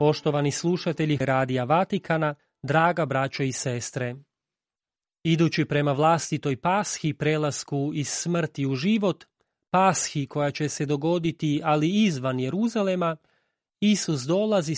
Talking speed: 110 wpm